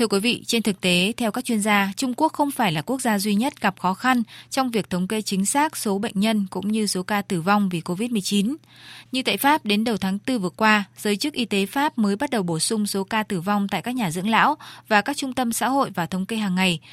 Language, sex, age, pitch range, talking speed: Vietnamese, female, 20-39, 190-235 Hz, 275 wpm